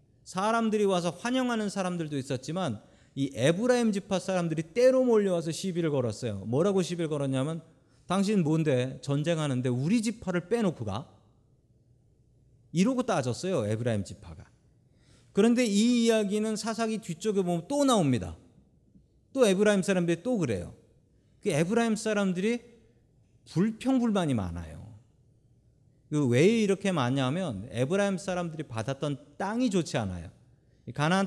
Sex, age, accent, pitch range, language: male, 40-59, native, 125-190 Hz, Korean